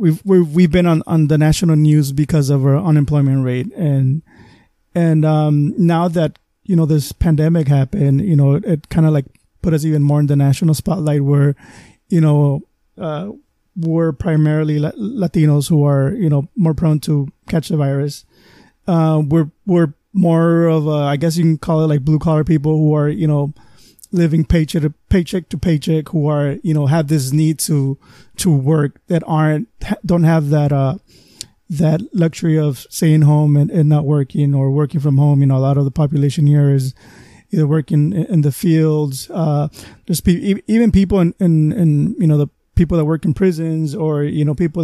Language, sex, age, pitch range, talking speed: English, male, 20-39, 145-165 Hz, 195 wpm